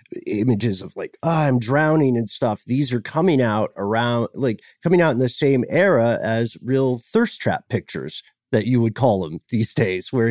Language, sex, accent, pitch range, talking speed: English, male, American, 110-140 Hz, 190 wpm